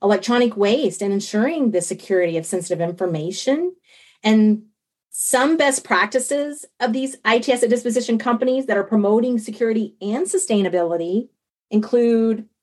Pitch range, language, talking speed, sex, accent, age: 185-245 Hz, English, 125 wpm, female, American, 30-49